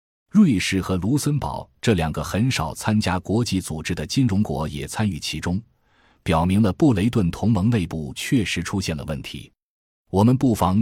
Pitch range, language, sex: 85-115 Hz, Chinese, male